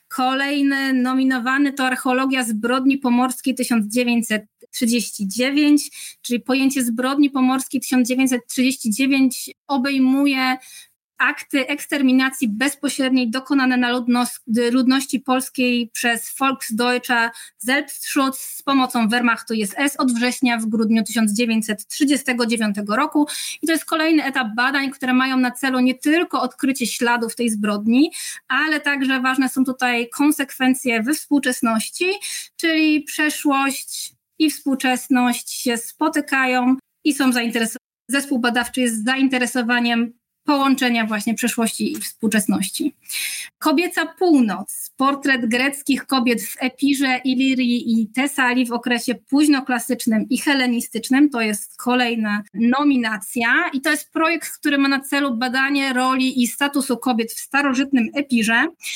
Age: 20-39